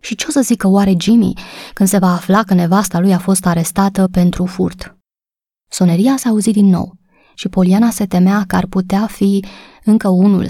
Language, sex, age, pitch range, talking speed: Romanian, female, 20-39, 180-210 Hz, 195 wpm